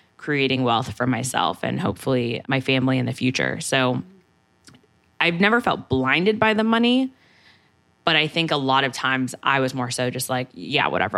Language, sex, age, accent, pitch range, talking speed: English, female, 20-39, American, 125-140 Hz, 185 wpm